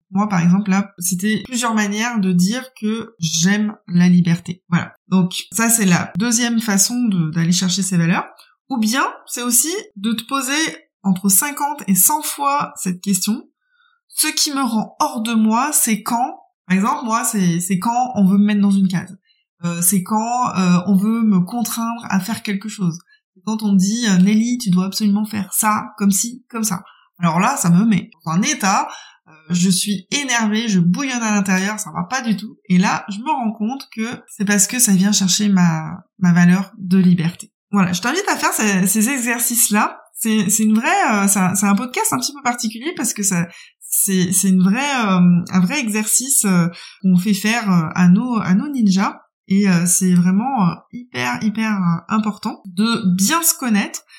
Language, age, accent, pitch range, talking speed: French, 20-39, French, 185-235 Hz, 190 wpm